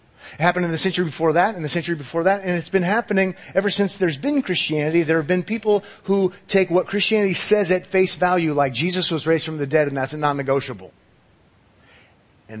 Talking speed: 215 wpm